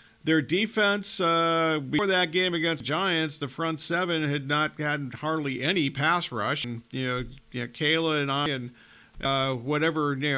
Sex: male